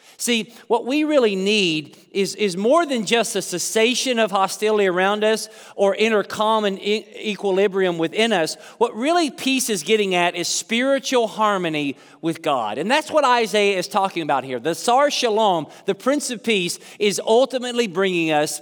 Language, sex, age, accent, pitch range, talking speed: English, male, 40-59, American, 175-230 Hz, 175 wpm